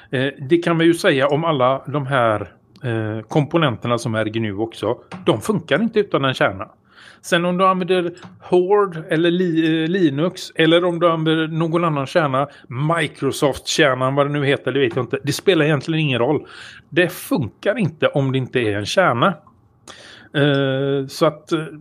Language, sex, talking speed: Swedish, male, 160 wpm